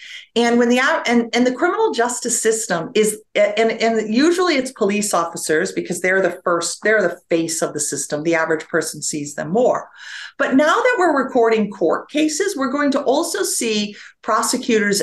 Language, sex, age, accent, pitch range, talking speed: English, female, 50-69, American, 190-255 Hz, 185 wpm